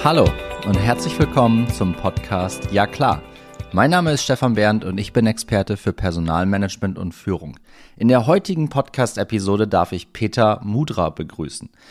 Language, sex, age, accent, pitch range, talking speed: German, male, 30-49, German, 95-120 Hz, 150 wpm